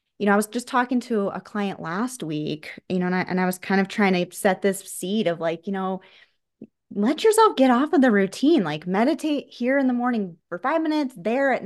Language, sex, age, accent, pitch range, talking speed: English, female, 20-39, American, 185-250 Hz, 240 wpm